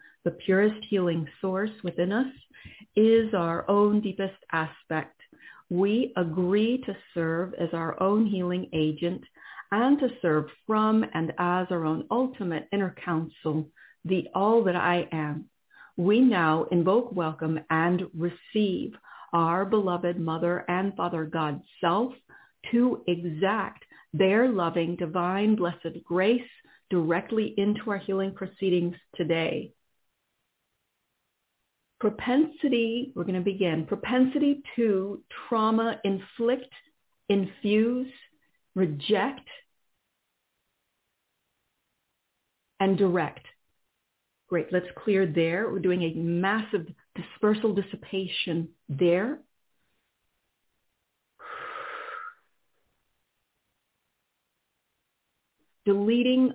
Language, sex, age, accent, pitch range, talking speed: English, female, 50-69, American, 170-225 Hz, 90 wpm